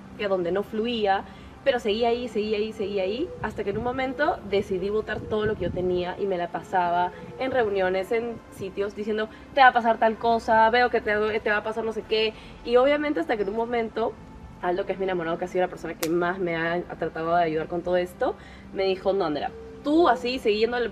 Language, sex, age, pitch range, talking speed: Spanish, female, 20-39, 185-240 Hz, 230 wpm